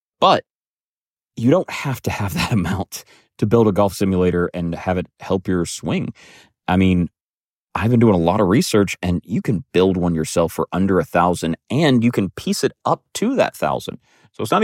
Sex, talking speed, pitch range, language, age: male, 205 wpm, 90-120 Hz, English, 30-49